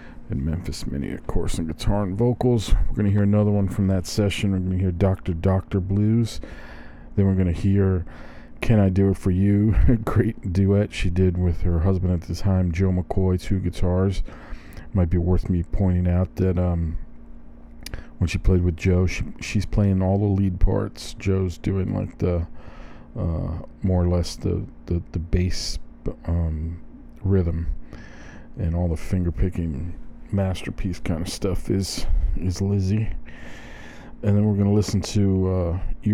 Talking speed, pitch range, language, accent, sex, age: 170 wpm, 85-100 Hz, English, American, male, 40-59